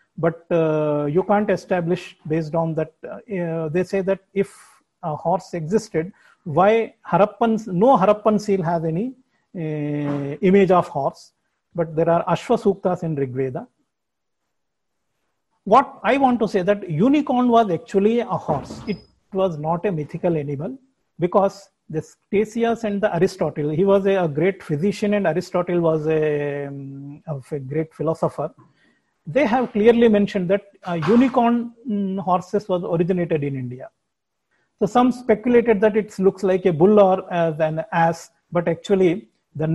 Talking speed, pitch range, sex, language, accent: 145 wpm, 165-220 Hz, male, English, Indian